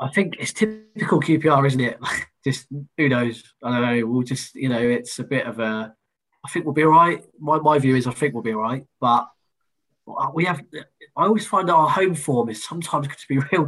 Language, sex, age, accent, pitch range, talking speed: English, male, 20-39, British, 120-155 Hz, 230 wpm